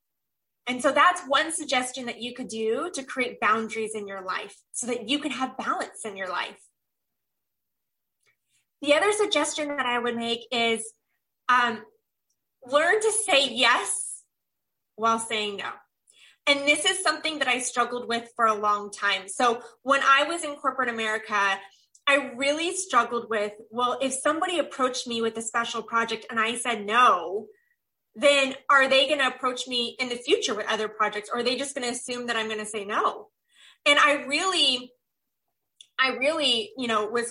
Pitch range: 230-285 Hz